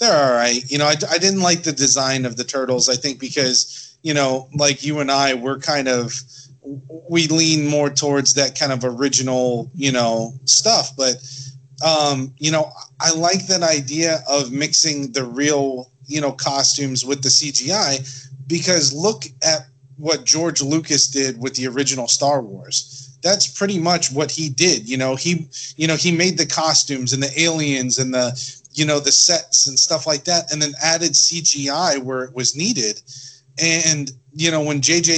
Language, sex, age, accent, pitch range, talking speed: English, male, 30-49, American, 130-160 Hz, 185 wpm